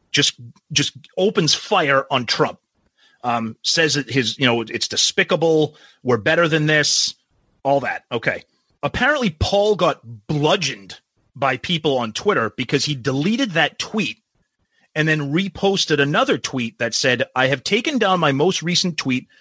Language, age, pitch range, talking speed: English, 30-49, 130-175 Hz, 150 wpm